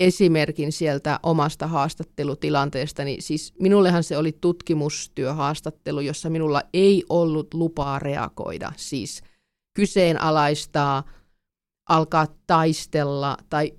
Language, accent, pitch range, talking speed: Finnish, native, 150-190 Hz, 85 wpm